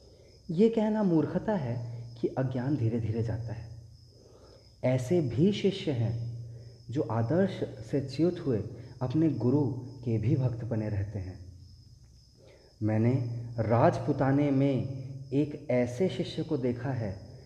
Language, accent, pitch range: Hindi, native, 115-145 Hz